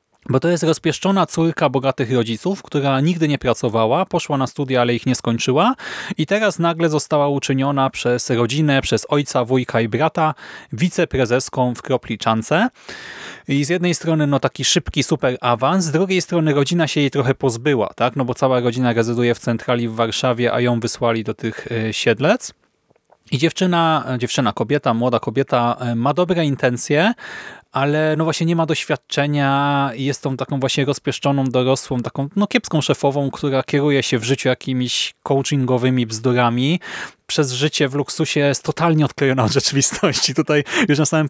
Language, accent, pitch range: Polish, native, 125-155 Hz